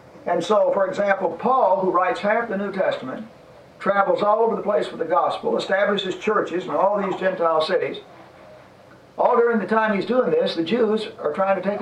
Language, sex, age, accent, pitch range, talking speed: English, male, 50-69, American, 170-225 Hz, 200 wpm